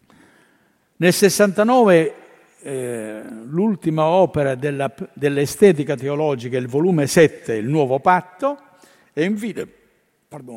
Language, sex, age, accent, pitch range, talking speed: Italian, male, 60-79, native, 150-235 Hz, 90 wpm